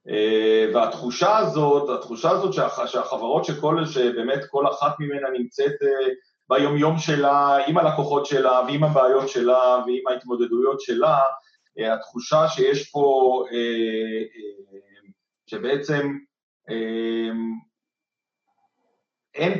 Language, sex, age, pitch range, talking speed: Hebrew, male, 40-59, 125-165 Hz, 85 wpm